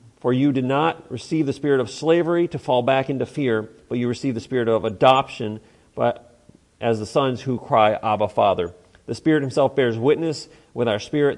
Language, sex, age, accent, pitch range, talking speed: English, male, 40-59, American, 110-150 Hz, 190 wpm